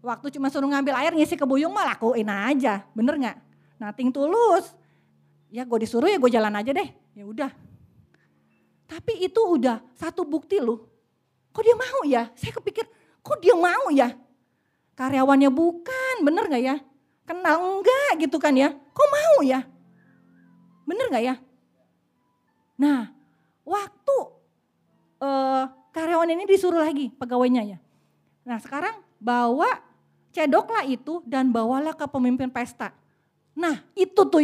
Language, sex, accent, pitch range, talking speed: Indonesian, female, native, 250-370 Hz, 140 wpm